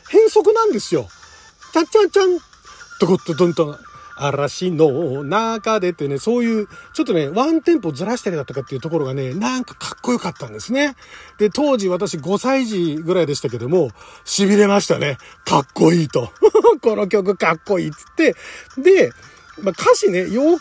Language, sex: Japanese, male